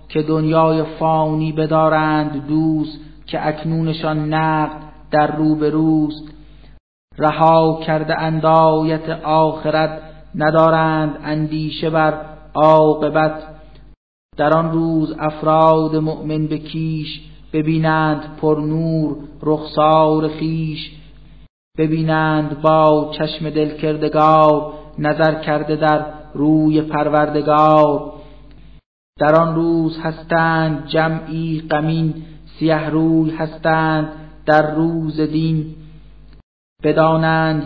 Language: Persian